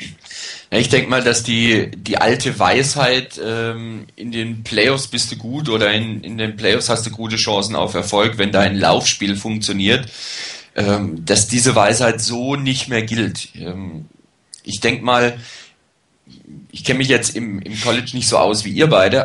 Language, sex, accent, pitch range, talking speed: German, male, German, 100-120 Hz, 170 wpm